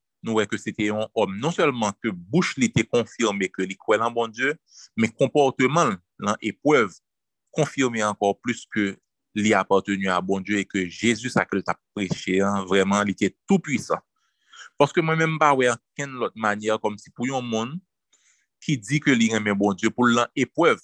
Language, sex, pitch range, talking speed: French, male, 105-150 Hz, 185 wpm